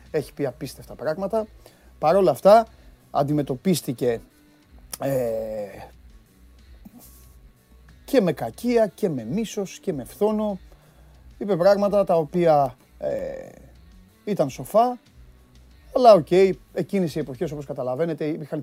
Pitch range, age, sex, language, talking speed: 105-155 Hz, 30-49, male, Greek, 105 wpm